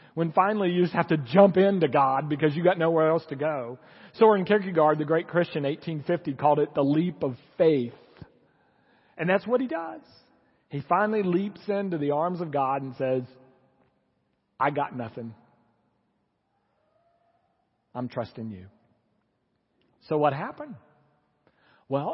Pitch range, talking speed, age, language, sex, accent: 145-210 Hz, 145 wpm, 40-59, English, male, American